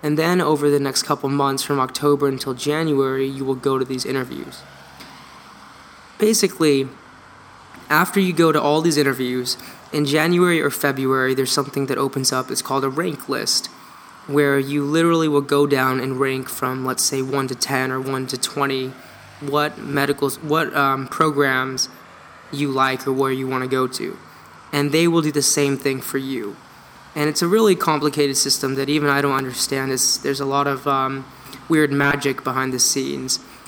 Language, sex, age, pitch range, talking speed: Danish, male, 20-39, 135-150 Hz, 180 wpm